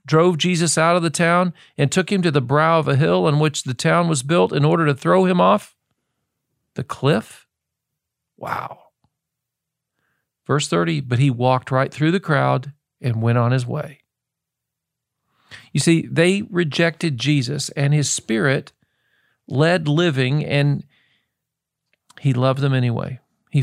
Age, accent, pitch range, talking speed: 50-69, American, 125-160 Hz, 150 wpm